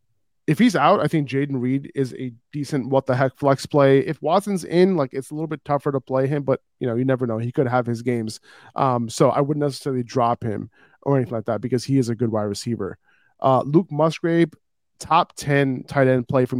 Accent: American